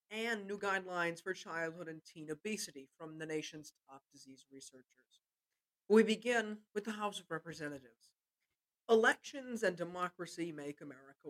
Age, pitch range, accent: 50-69, 160-210 Hz, American